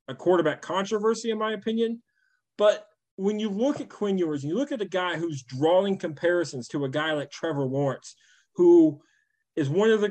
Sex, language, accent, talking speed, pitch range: male, English, American, 190 wpm, 145-195 Hz